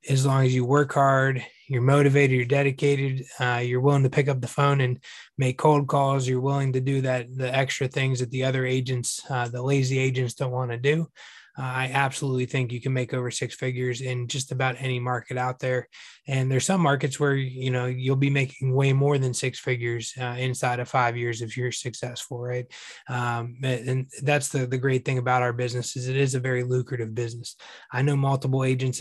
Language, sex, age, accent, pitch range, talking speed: English, male, 20-39, American, 125-140 Hz, 215 wpm